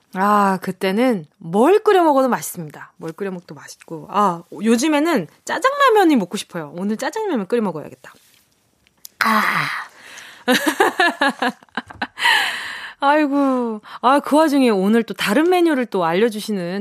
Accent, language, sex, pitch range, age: native, Korean, female, 195-315 Hz, 20-39